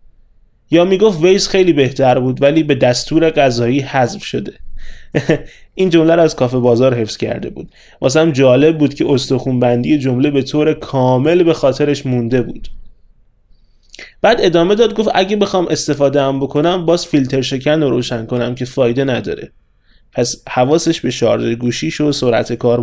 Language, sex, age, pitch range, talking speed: Persian, male, 20-39, 125-165 Hz, 160 wpm